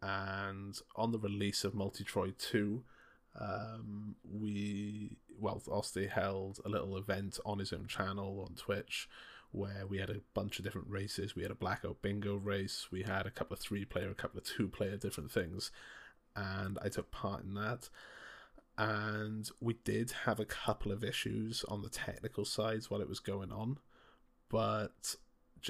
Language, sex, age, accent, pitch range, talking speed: English, male, 20-39, British, 95-105 Hz, 170 wpm